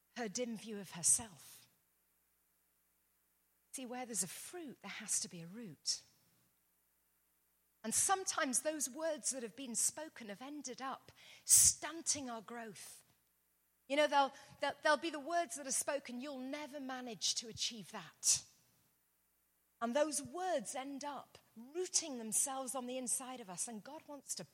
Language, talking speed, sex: English, 155 wpm, female